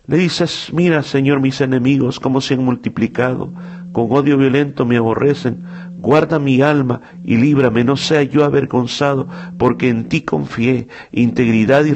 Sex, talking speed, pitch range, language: male, 150 wpm, 100-135 Hz, Spanish